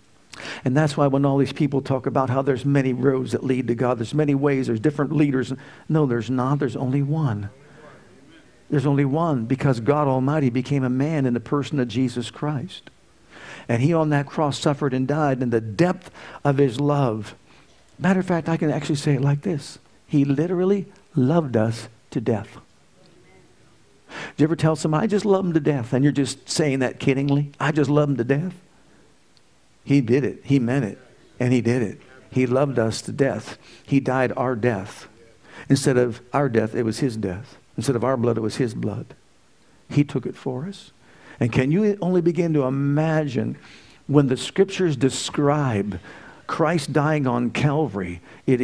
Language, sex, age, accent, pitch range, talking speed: English, male, 50-69, American, 125-150 Hz, 190 wpm